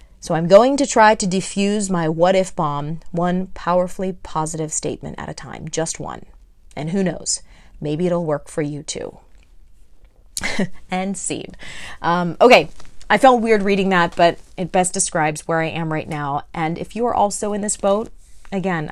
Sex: female